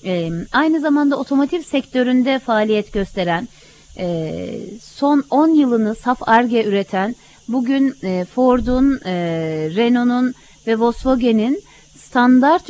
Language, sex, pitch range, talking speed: Turkish, female, 180-275 Hz, 105 wpm